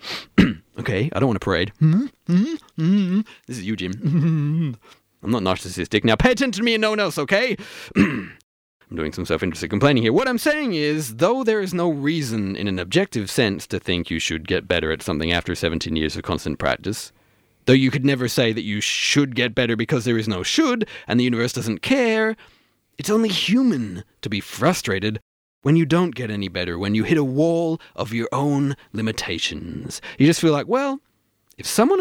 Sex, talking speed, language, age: male, 210 wpm, English, 30-49